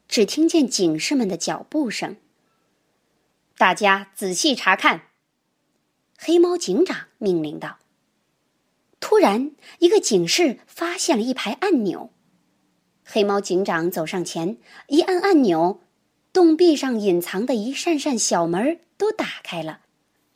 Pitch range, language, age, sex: 195-325 Hz, Chinese, 20-39, male